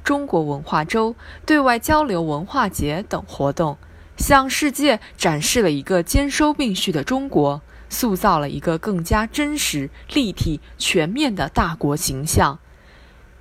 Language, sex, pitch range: Chinese, female, 160-250 Hz